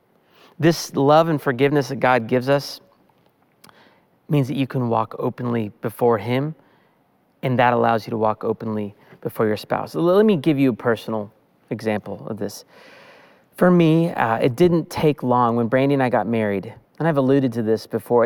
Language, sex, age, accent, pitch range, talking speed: English, male, 30-49, American, 120-165 Hz, 180 wpm